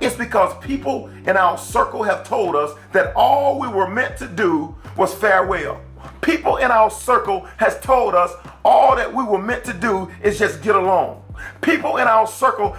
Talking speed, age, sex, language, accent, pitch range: 190 wpm, 40-59, male, English, American, 180-265 Hz